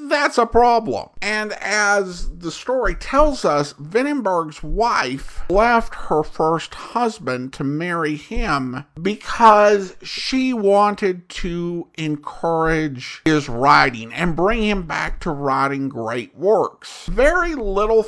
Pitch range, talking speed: 135-210 Hz, 115 wpm